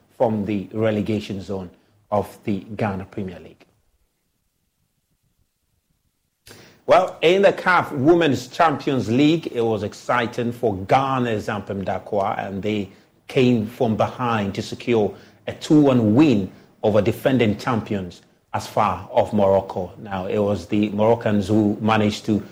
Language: English